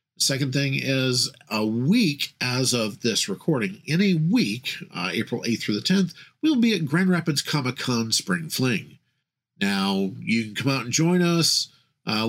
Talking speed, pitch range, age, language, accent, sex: 170 wpm, 120-160 Hz, 50-69, English, American, male